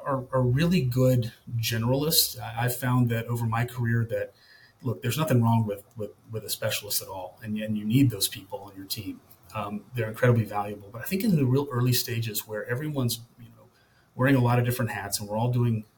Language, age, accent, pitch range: English, 30-49, American, 115-130 Hz